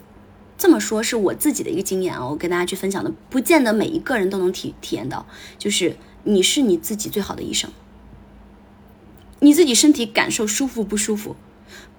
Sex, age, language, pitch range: female, 20-39, Chinese, 195-265 Hz